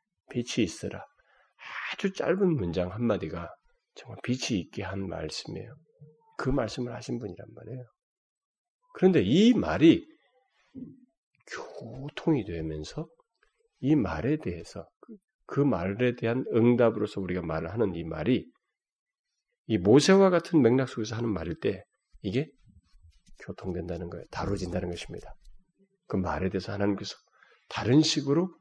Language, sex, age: Korean, male, 40-59